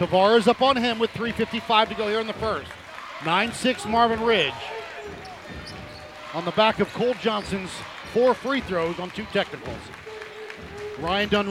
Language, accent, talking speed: English, American, 150 wpm